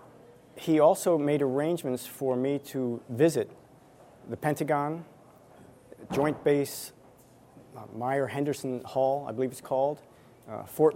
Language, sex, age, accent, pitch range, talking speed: English, male, 40-59, American, 120-145 Hz, 120 wpm